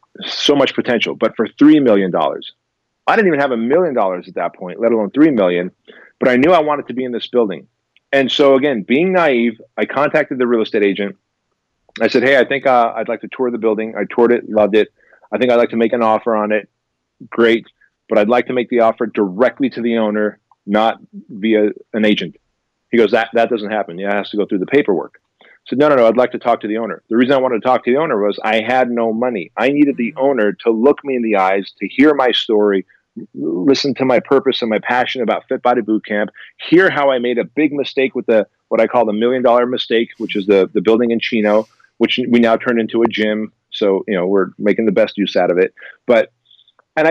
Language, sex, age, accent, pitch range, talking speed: English, male, 40-59, American, 105-130 Hz, 245 wpm